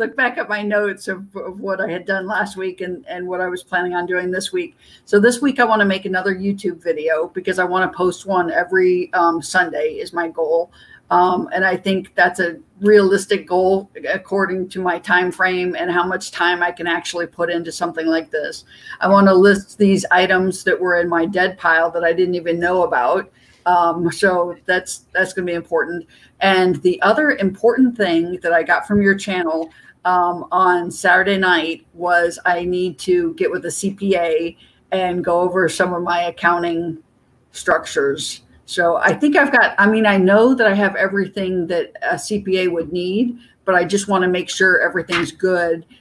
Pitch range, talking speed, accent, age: 170-195 Hz, 200 wpm, American, 50-69